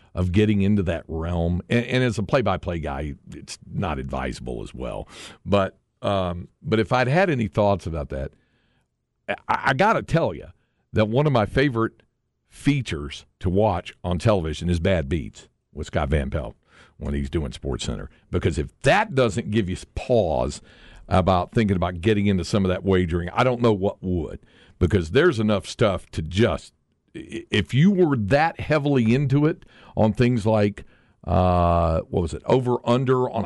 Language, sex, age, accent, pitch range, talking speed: English, male, 50-69, American, 90-125 Hz, 175 wpm